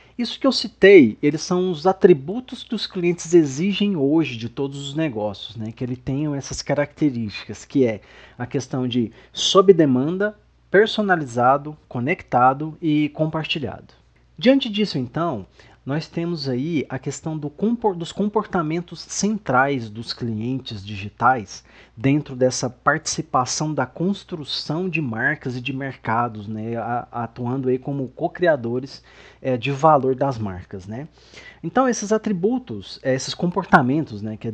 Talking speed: 135 wpm